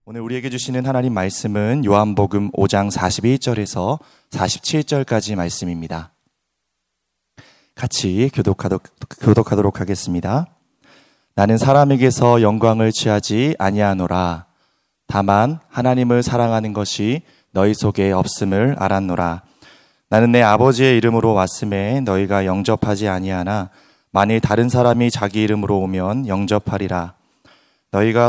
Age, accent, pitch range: 30-49, native, 95-120 Hz